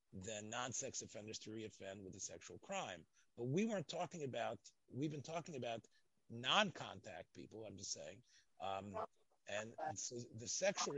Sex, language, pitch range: male, English, 110-145 Hz